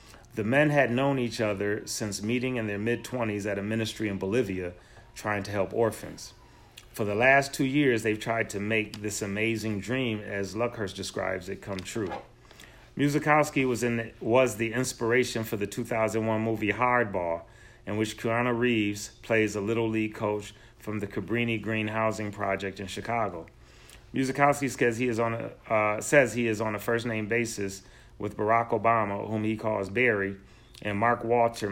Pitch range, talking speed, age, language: 105-120 Hz, 170 wpm, 30-49, English